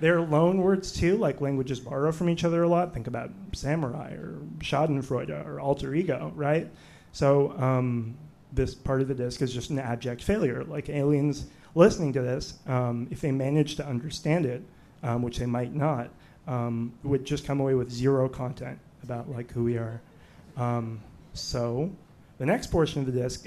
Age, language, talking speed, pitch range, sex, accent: 30-49, English, 185 wpm, 125-155 Hz, male, American